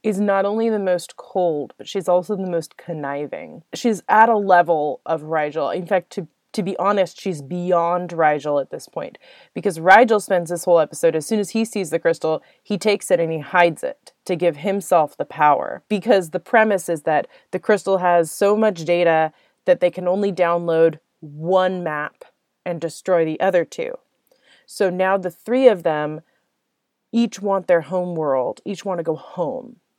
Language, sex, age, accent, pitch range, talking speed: English, female, 20-39, American, 165-205 Hz, 190 wpm